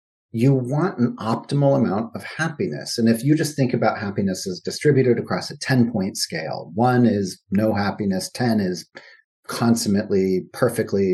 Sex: male